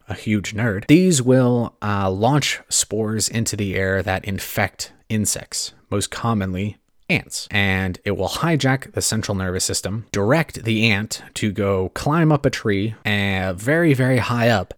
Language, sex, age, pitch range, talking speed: English, male, 20-39, 100-120 Hz, 155 wpm